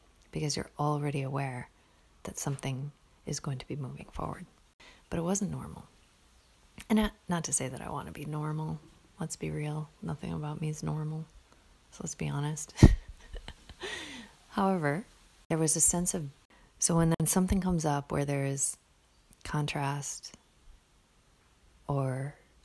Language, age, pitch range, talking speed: English, 30-49, 130-155 Hz, 145 wpm